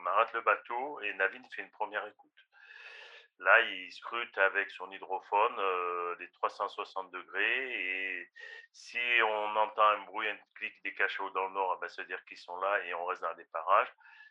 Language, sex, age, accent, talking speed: French, male, 40-59, French, 190 wpm